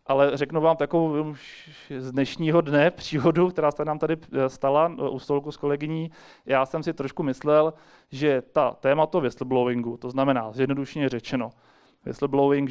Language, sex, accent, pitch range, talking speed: Czech, male, native, 130-150 Hz, 145 wpm